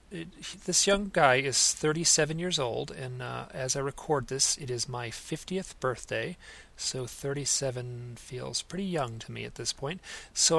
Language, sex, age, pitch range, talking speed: English, male, 40-59, 120-150 Hz, 170 wpm